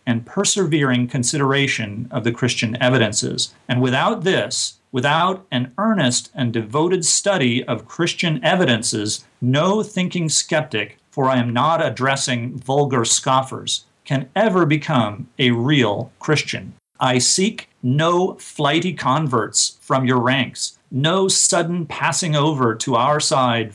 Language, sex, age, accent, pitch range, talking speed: English, male, 40-59, American, 125-170 Hz, 125 wpm